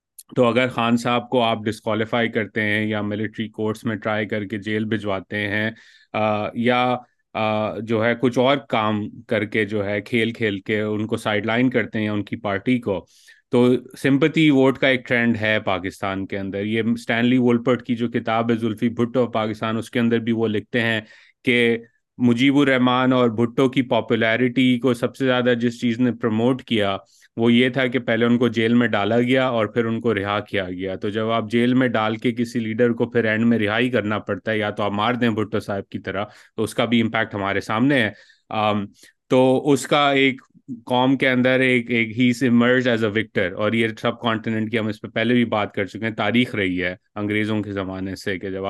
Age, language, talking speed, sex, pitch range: 30-49, Urdu, 220 wpm, male, 105-125 Hz